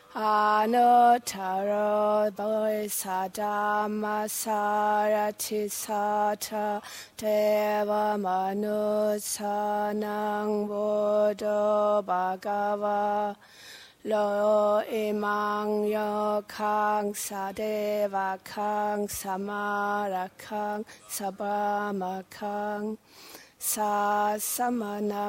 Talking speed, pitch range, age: 50 wpm, 205-210 Hz, 20-39